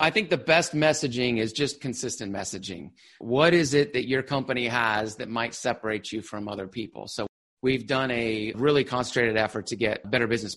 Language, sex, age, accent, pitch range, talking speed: English, male, 30-49, American, 110-130 Hz, 195 wpm